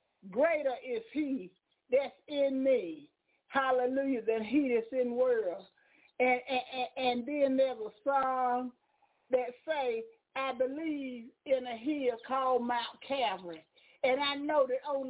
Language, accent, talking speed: English, American, 140 wpm